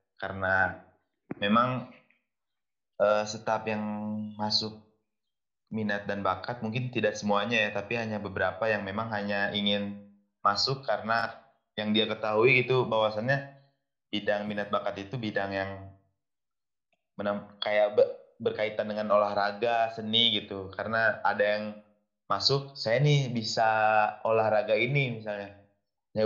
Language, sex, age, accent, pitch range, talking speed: Indonesian, male, 20-39, native, 95-110 Hz, 115 wpm